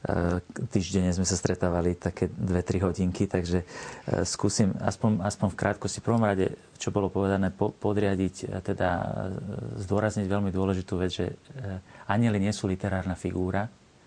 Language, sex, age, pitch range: Slovak, male, 40-59, 90-105 Hz